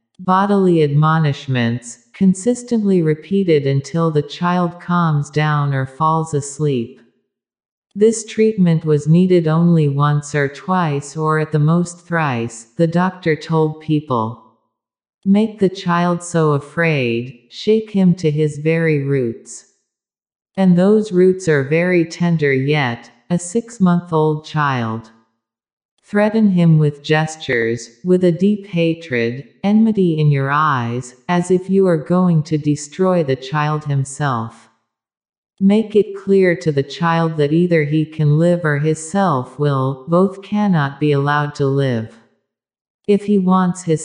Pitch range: 140-180 Hz